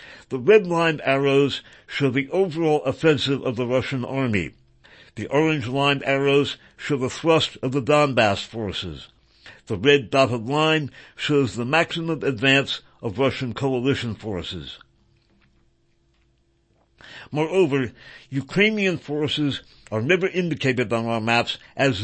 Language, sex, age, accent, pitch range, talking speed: English, male, 60-79, American, 115-150 Hz, 115 wpm